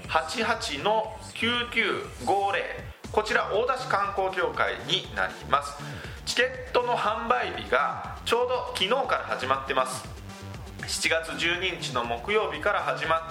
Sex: male